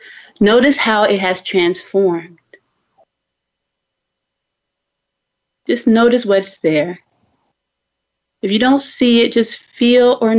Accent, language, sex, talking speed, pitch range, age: American, English, female, 100 wpm, 185-235 Hz, 30-49